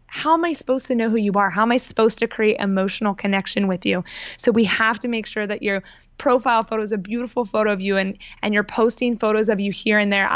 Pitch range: 200-240 Hz